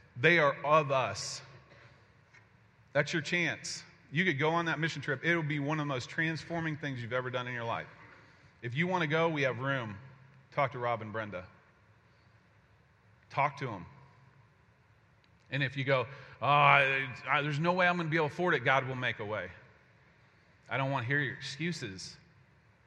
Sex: male